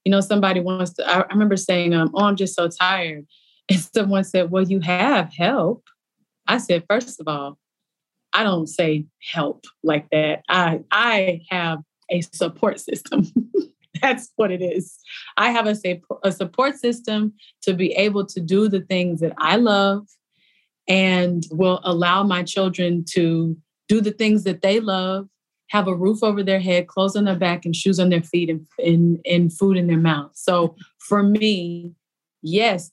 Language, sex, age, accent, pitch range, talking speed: English, female, 30-49, American, 175-200 Hz, 175 wpm